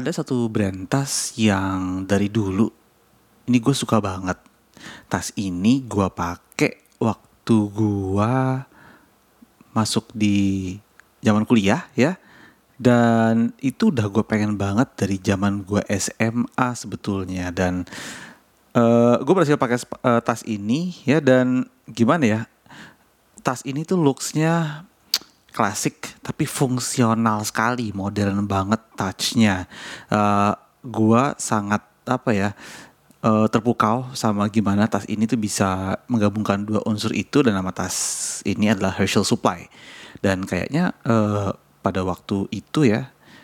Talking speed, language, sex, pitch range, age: 120 wpm, English, male, 100-120 Hz, 30-49